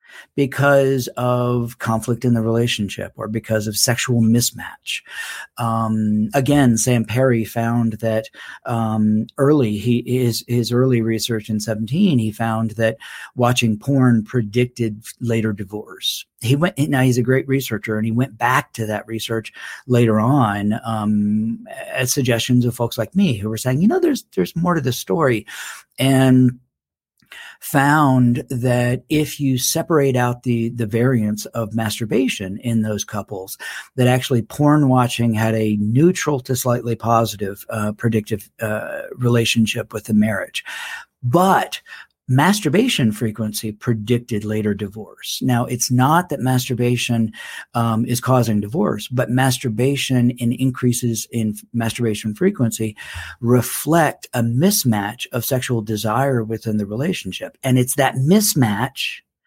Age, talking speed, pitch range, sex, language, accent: 50-69, 135 wpm, 110-130 Hz, male, English, American